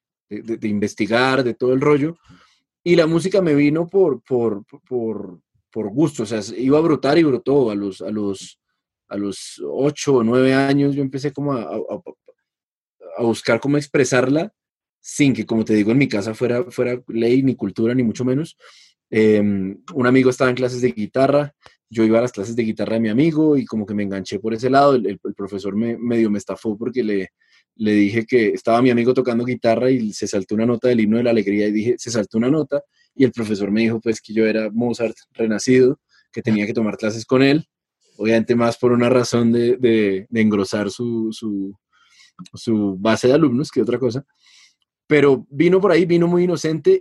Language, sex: Spanish, male